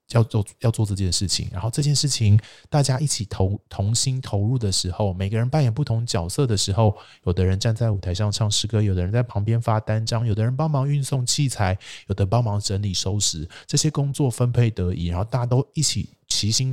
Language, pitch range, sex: Chinese, 95-120 Hz, male